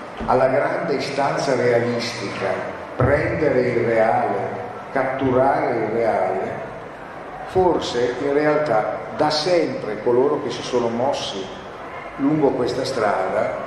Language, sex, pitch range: Italian, male, 115-150 Hz